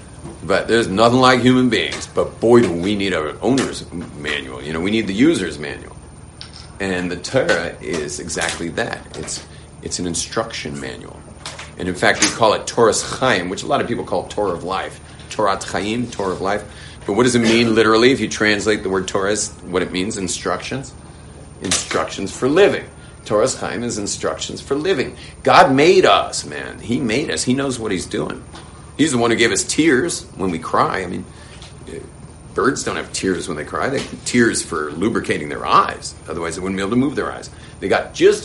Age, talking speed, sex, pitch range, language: 40-59, 200 wpm, male, 90-130 Hz, English